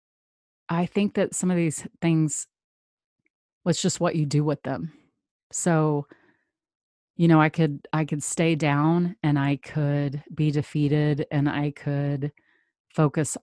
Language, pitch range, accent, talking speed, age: English, 145-160 Hz, American, 145 wpm, 30-49